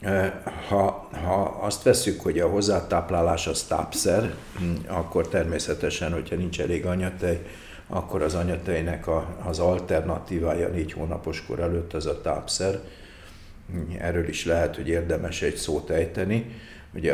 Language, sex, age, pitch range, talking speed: Hungarian, male, 60-79, 85-95 Hz, 125 wpm